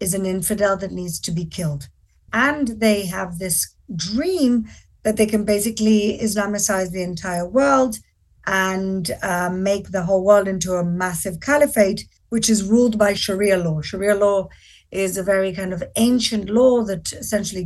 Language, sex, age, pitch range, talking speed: English, female, 50-69, 190-235 Hz, 165 wpm